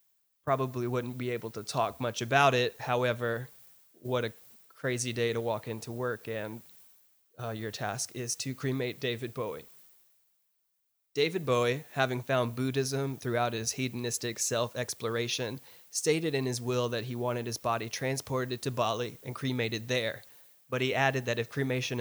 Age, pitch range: 20-39, 115-135 Hz